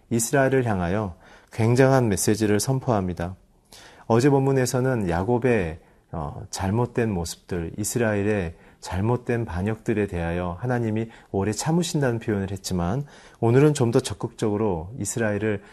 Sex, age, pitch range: male, 40-59, 95-120 Hz